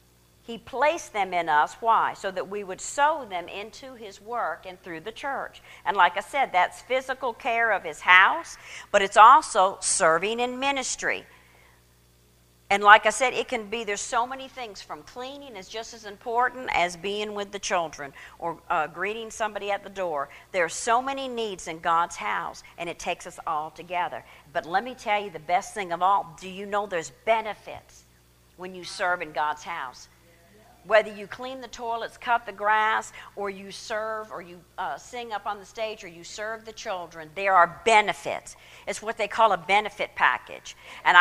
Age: 50-69